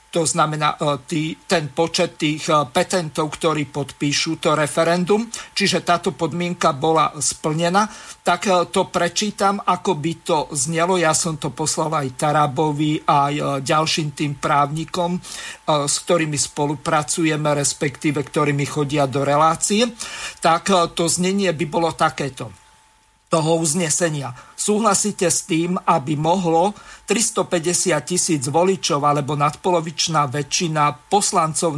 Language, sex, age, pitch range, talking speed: Slovak, male, 50-69, 150-180 Hz, 115 wpm